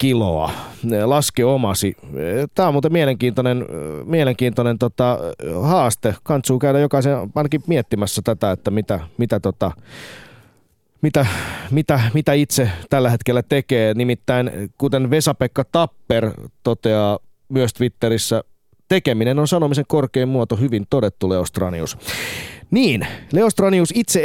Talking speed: 110 wpm